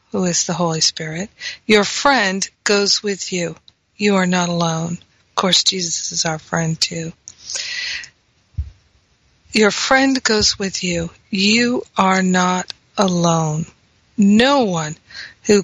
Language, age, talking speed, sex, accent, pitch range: English, 50-69, 125 wpm, female, American, 175-215 Hz